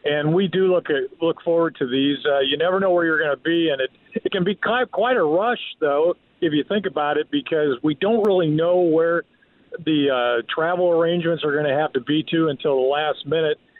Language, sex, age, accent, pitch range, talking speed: English, male, 50-69, American, 150-185 Hz, 230 wpm